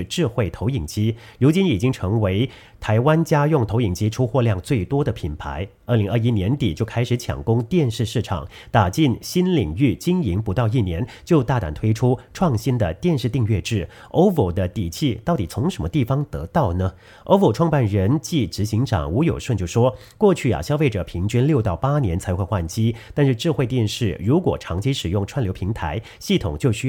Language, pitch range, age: English, 100-140 Hz, 40-59